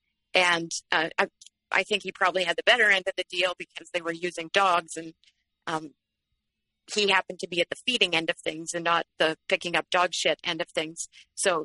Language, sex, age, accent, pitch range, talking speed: English, female, 40-59, American, 165-195 Hz, 215 wpm